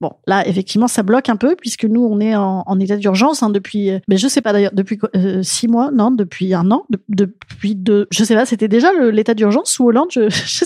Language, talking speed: French, 260 wpm